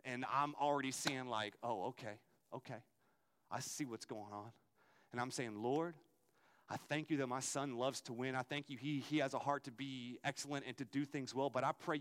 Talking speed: 225 wpm